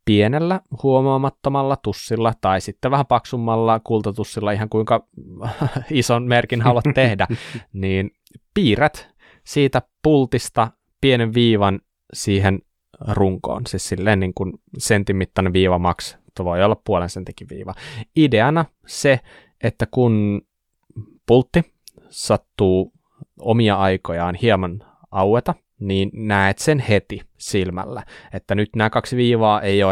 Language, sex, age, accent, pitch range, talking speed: Finnish, male, 20-39, native, 95-120 Hz, 110 wpm